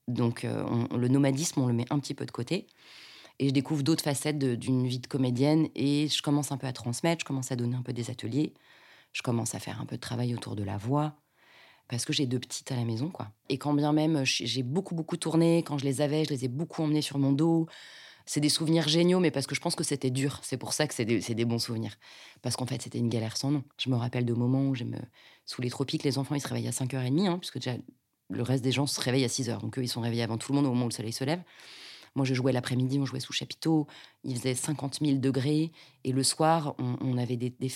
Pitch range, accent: 125-155 Hz, French